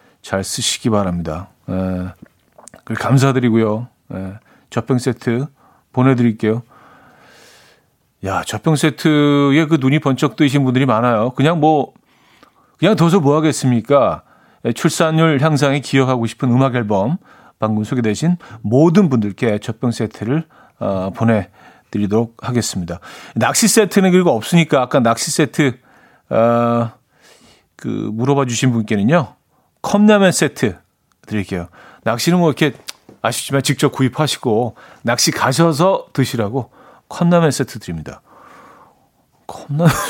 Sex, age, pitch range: male, 40-59, 115-150 Hz